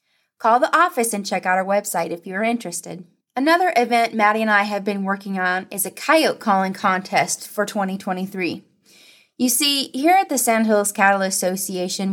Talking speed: 175 wpm